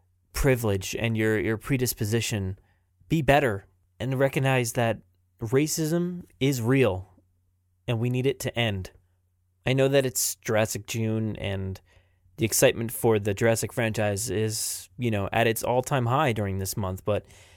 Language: English